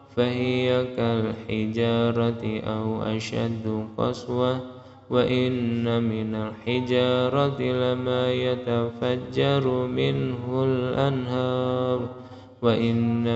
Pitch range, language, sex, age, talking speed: 115-130 Hz, Indonesian, male, 20-39, 60 wpm